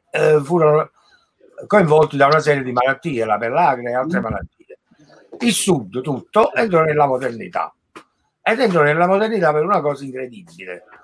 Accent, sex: native, male